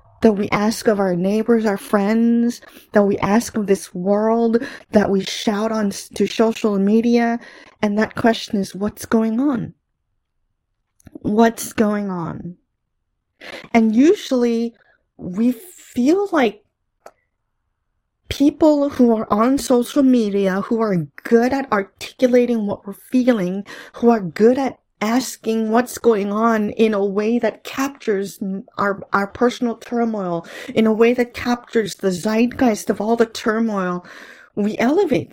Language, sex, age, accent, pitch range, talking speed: English, female, 30-49, American, 210-245 Hz, 135 wpm